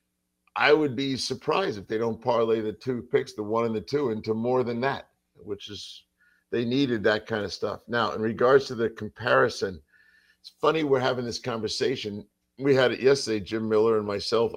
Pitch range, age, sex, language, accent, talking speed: 110-175 Hz, 50-69, male, English, American, 200 wpm